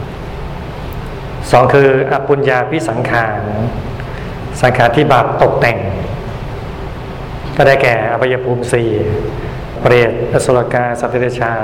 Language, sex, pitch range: Thai, male, 115-135 Hz